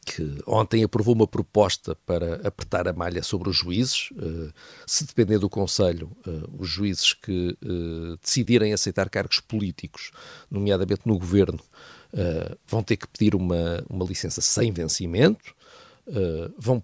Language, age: Portuguese, 50-69